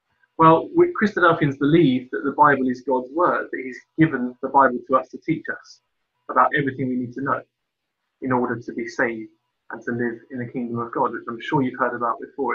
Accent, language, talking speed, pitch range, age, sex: British, English, 220 wpm, 125-150 Hz, 20-39, male